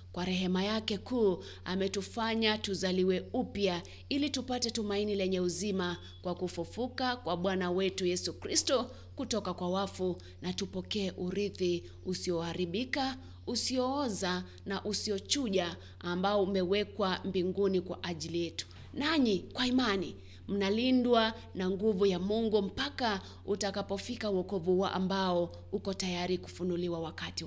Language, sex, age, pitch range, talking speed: English, female, 30-49, 180-235 Hz, 115 wpm